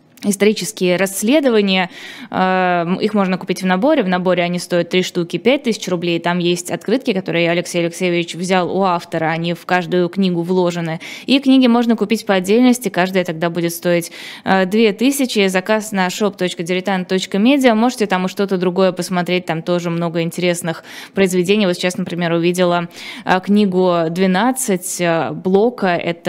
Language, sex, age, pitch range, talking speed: Russian, female, 20-39, 175-210 Hz, 140 wpm